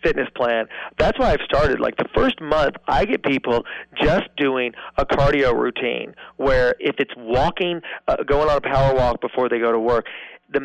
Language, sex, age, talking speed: English, male, 40-59, 190 wpm